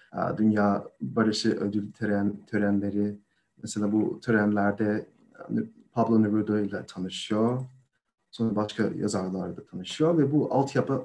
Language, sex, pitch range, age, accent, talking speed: Turkish, male, 105-140 Hz, 40-59, native, 105 wpm